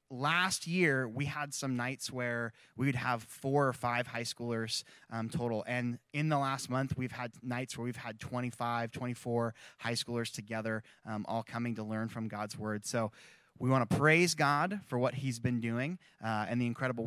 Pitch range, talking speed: 120-140 Hz, 195 wpm